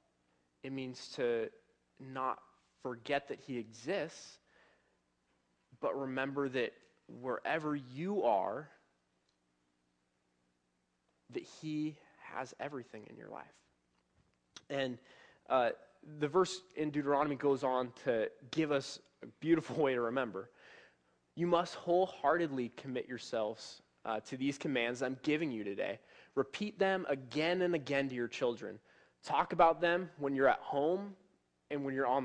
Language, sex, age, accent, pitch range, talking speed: English, male, 20-39, American, 110-145 Hz, 130 wpm